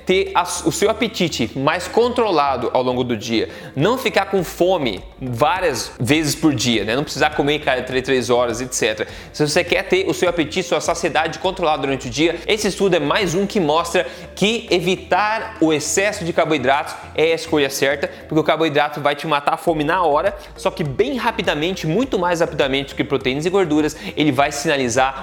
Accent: Brazilian